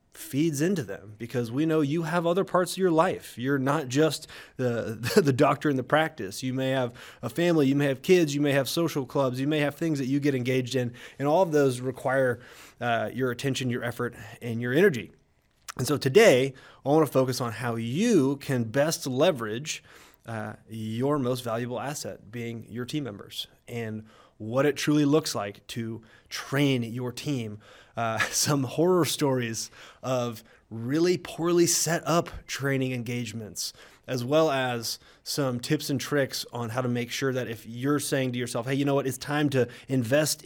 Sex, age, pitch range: male, 20-39, 120-155 Hz